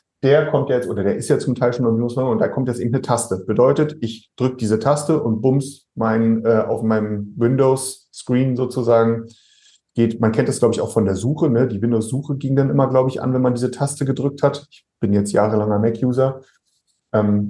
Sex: male